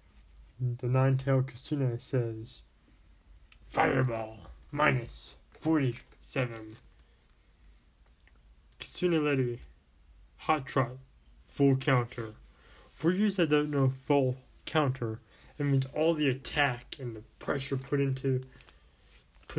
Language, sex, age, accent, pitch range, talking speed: English, male, 20-39, American, 95-140 Hz, 100 wpm